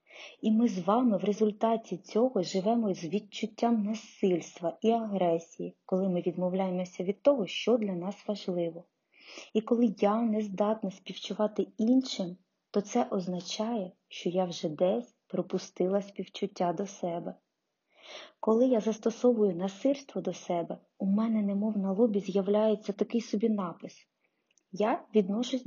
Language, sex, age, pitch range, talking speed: Ukrainian, female, 20-39, 185-230 Hz, 135 wpm